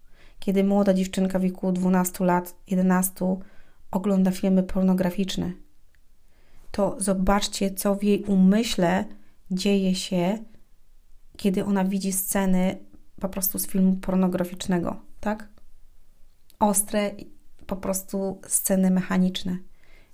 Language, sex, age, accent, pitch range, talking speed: Polish, female, 30-49, native, 165-195 Hz, 100 wpm